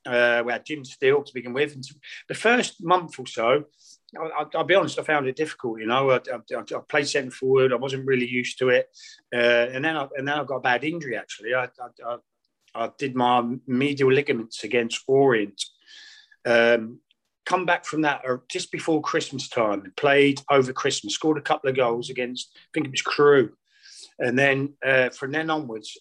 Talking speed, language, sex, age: 205 wpm, English, male, 30-49